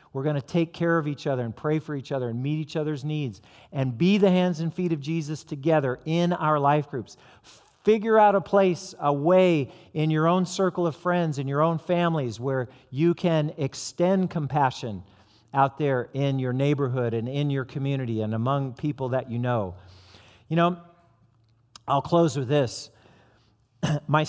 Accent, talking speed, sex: American, 185 wpm, male